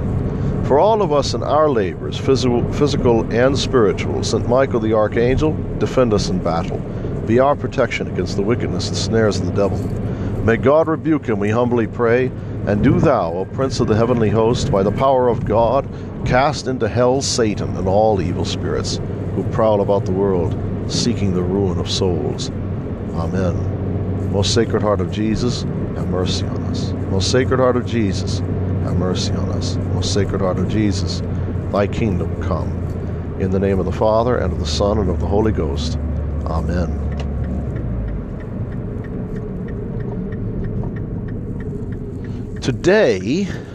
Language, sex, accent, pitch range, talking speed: English, male, American, 95-120 Hz, 150 wpm